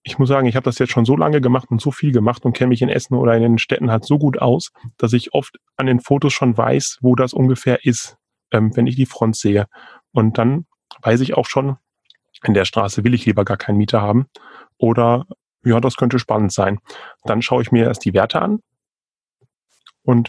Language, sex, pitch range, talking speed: German, male, 110-125 Hz, 230 wpm